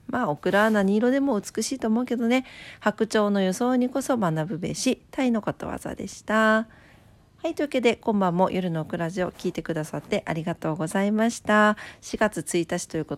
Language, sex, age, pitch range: Japanese, female, 40-59, 160-225 Hz